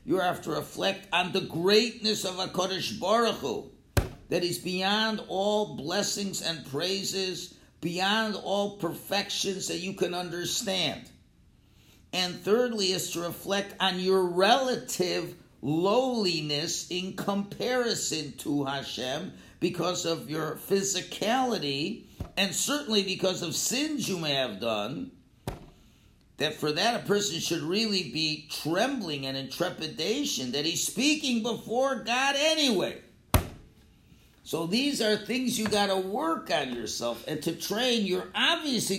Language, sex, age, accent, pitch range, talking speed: English, male, 50-69, American, 175-235 Hz, 130 wpm